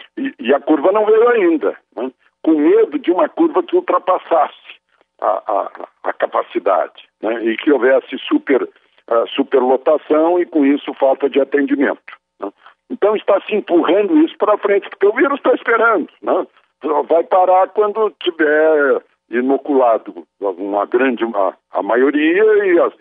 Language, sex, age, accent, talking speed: Portuguese, male, 60-79, Brazilian, 150 wpm